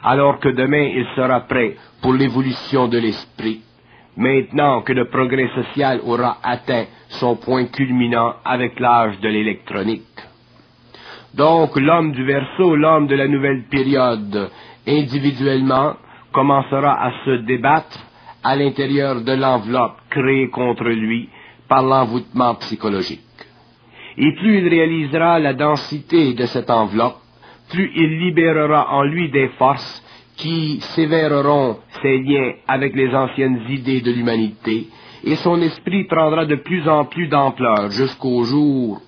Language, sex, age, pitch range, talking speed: French, male, 60-79, 125-150 Hz, 130 wpm